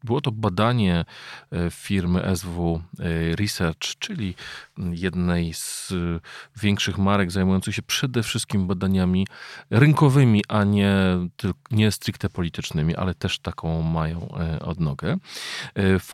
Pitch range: 90-115 Hz